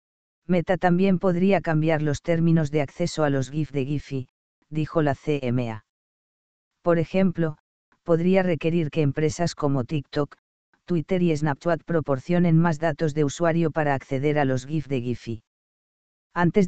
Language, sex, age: Spanish, female, 40-59